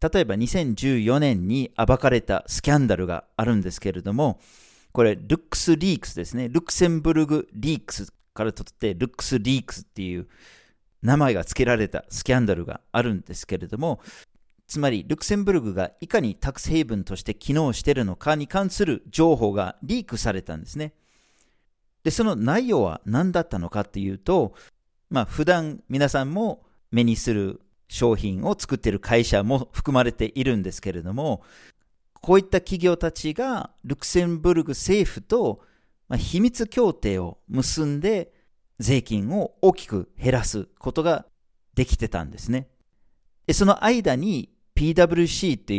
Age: 40-59